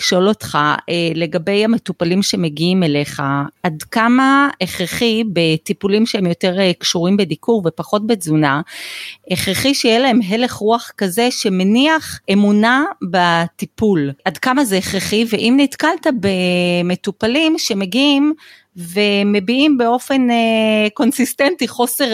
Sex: female